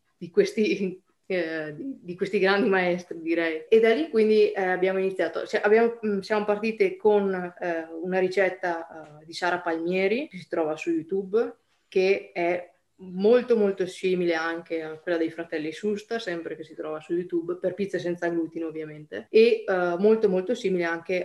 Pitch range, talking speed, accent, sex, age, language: 170-200 Hz, 170 wpm, native, female, 20-39, Italian